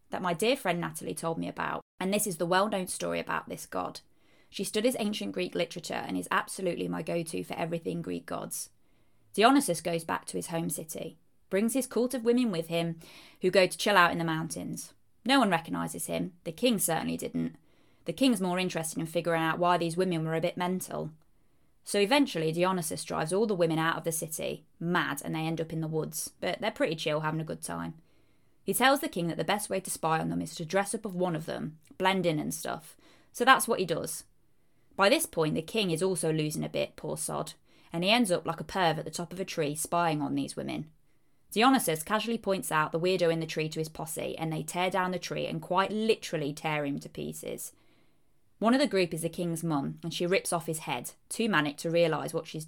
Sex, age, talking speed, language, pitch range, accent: female, 20-39, 235 wpm, English, 160-190 Hz, British